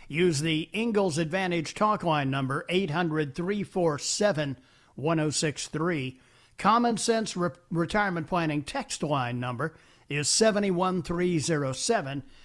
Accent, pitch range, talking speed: American, 135-180 Hz, 80 wpm